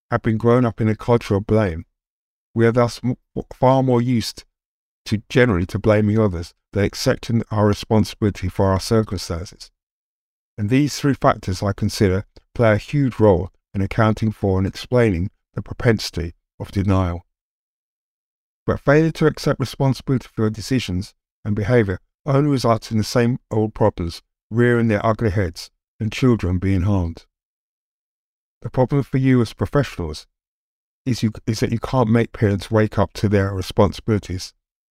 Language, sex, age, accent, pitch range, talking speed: English, male, 50-69, British, 100-120 Hz, 155 wpm